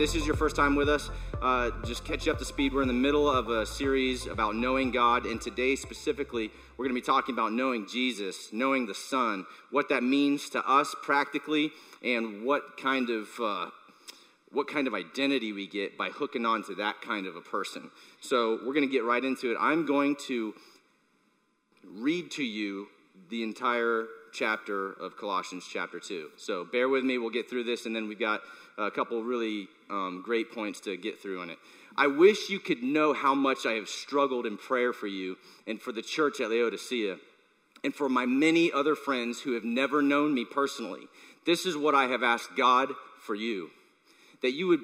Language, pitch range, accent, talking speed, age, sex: English, 115-145 Hz, American, 205 wpm, 30-49, male